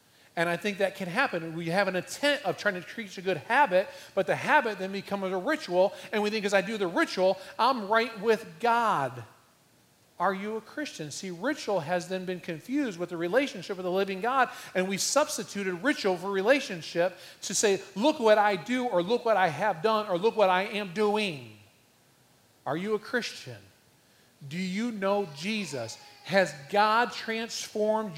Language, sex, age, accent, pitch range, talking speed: English, male, 40-59, American, 165-215 Hz, 185 wpm